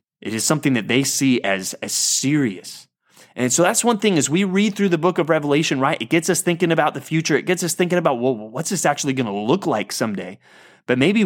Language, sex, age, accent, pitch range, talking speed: English, male, 30-49, American, 120-165 Hz, 245 wpm